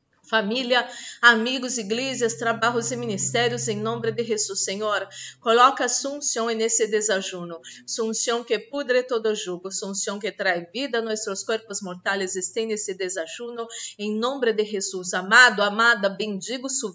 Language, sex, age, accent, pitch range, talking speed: Spanish, female, 30-49, Brazilian, 185-230 Hz, 140 wpm